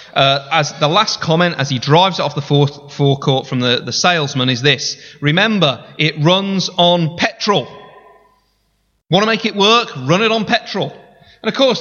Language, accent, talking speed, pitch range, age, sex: English, British, 180 wpm, 145-215 Hz, 30-49, male